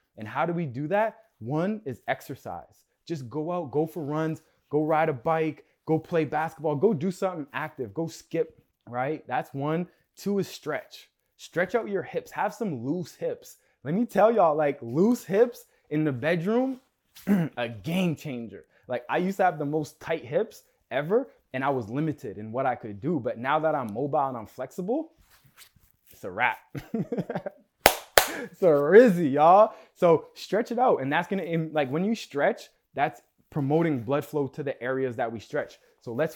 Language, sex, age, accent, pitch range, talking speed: English, male, 20-39, American, 145-185 Hz, 185 wpm